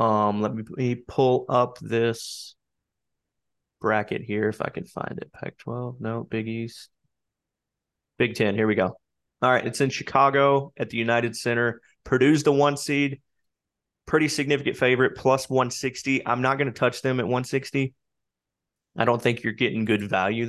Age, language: 20-39, English